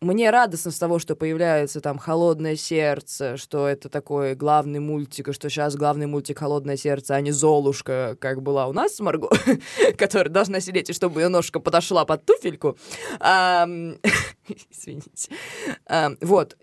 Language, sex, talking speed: Russian, female, 150 wpm